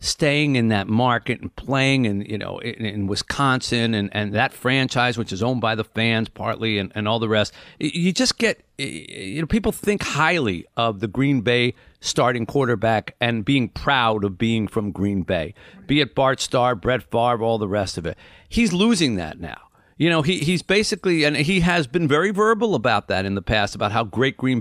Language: English